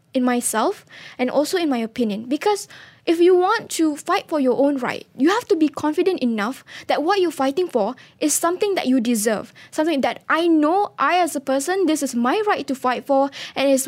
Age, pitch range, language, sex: 10-29, 245-310 Hz, English, female